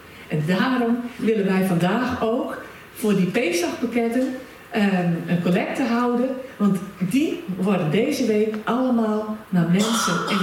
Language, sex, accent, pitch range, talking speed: Dutch, female, Dutch, 185-260 Hz, 120 wpm